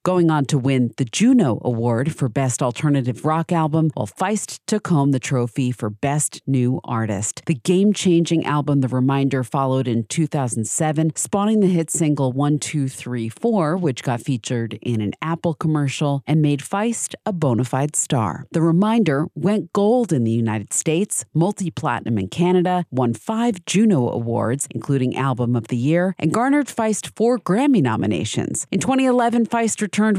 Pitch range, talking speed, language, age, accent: 130-185 Hz, 165 wpm, English, 40-59, American